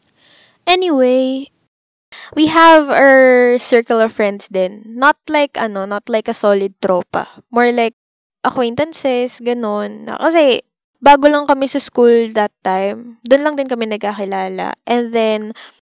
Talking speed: 130 wpm